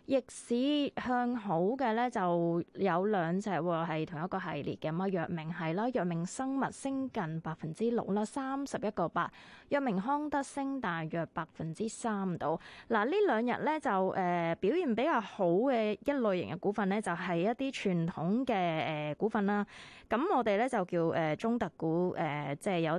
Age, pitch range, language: 20-39, 170-235 Hz, Chinese